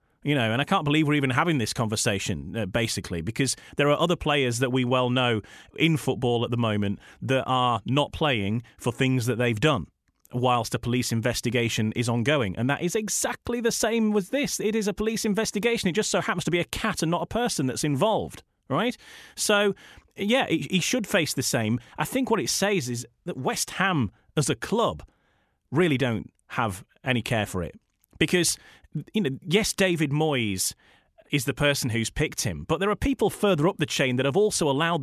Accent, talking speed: British, 205 wpm